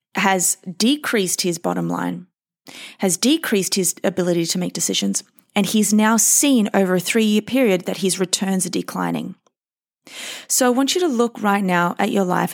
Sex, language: female, English